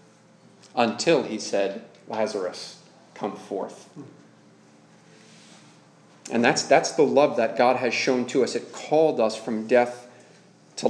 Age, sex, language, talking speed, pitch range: 30-49, male, English, 125 wpm, 115-140 Hz